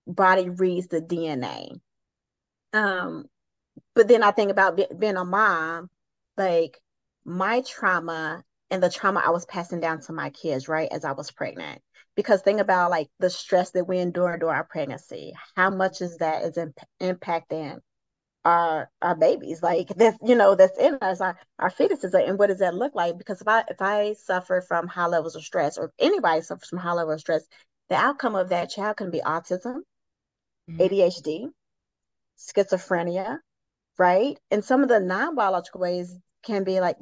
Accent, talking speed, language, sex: American, 175 wpm, English, female